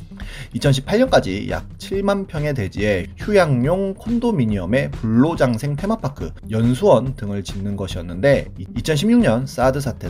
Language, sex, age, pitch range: Korean, male, 30-49, 95-145 Hz